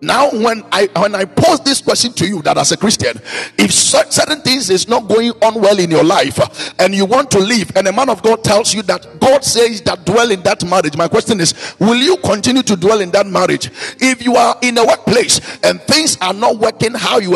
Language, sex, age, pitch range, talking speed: English, male, 50-69, 200-255 Hz, 240 wpm